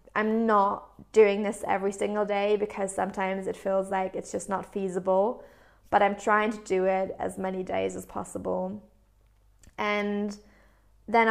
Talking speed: 155 wpm